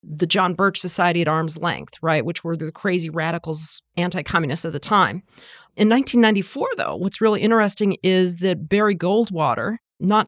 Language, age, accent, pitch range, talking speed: English, 40-59, American, 170-190 Hz, 165 wpm